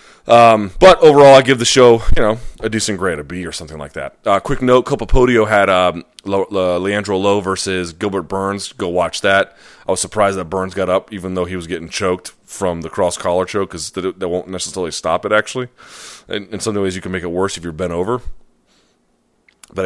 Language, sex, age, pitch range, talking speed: English, male, 30-49, 90-105 Hz, 210 wpm